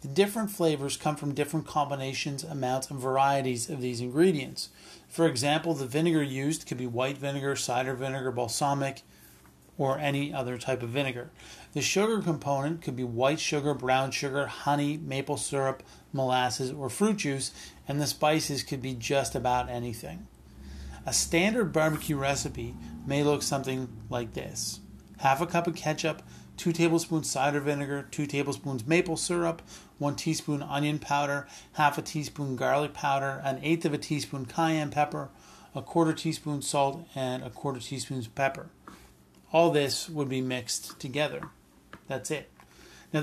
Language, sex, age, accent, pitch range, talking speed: English, male, 40-59, American, 130-155 Hz, 155 wpm